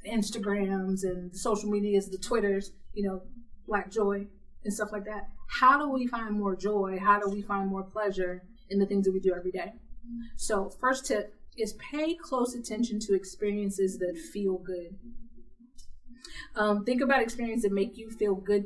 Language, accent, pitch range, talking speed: English, American, 195-230 Hz, 175 wpm